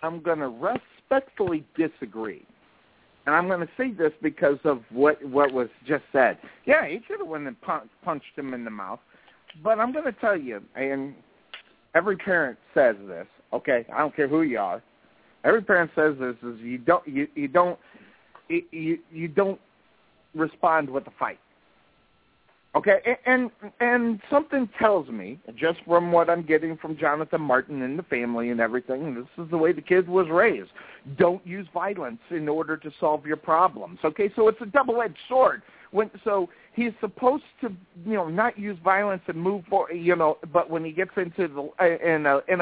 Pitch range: 150-205 Hz